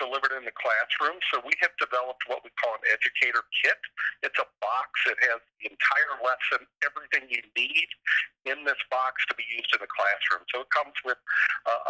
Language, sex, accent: English, male, American